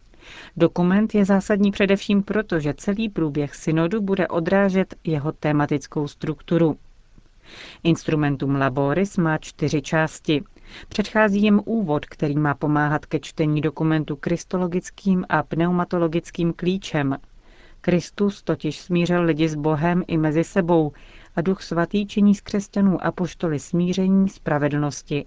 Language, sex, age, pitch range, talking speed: Czech, female, 40-59, 150-185 Hz, 120 wpm